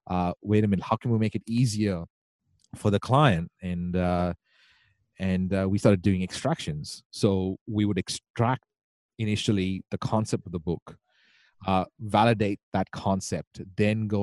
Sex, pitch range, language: male, 90-115 Hz, English